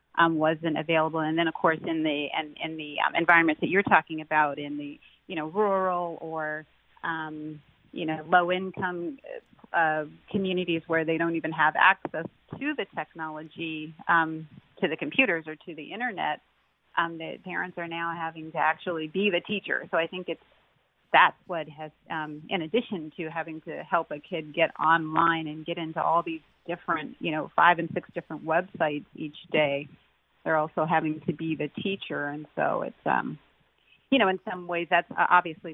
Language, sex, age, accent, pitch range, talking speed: English, female, 30-49, American, 155-175 Hz, 180 wpm